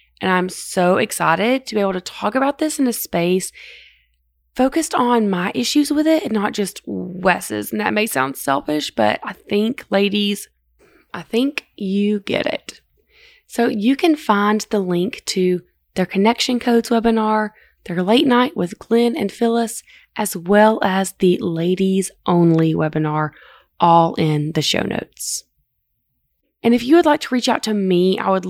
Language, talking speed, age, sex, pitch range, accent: English, 170 wpm, 20-39, female, 180-235 Hz, American